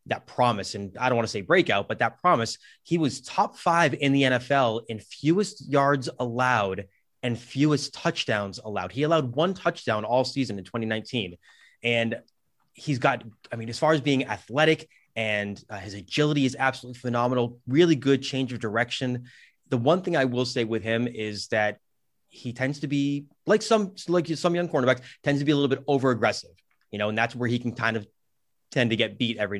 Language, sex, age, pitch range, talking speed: English, male, 30-49, 110-140 Hz, 200 wpm